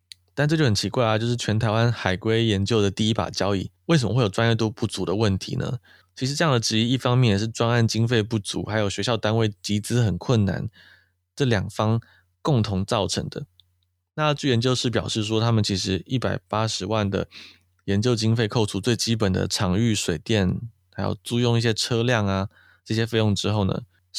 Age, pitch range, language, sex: 20-39, 100-115 Hz, Chinese, male